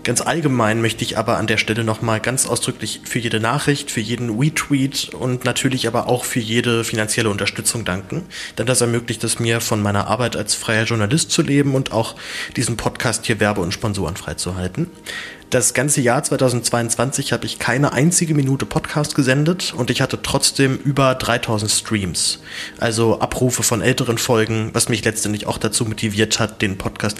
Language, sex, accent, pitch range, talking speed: German, male, German, 110-135 Hz, 175 wpm